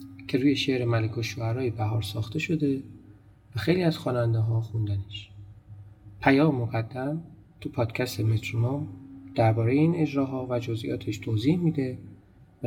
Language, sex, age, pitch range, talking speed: Persian, male, 40-59, 105-135 Hz, 125 wpm